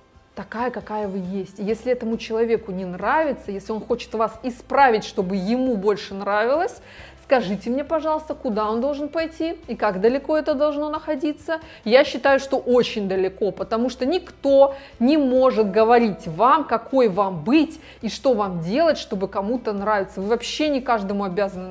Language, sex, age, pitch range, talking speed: Russian, female, 20-39, 205-275 Hz, 160 wpm